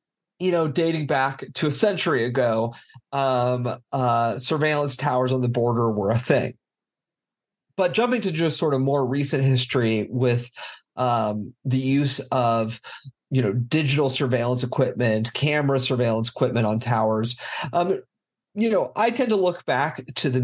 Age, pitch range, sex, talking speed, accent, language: 40-59, 120-150 Hz, male, 155 wpm, American, English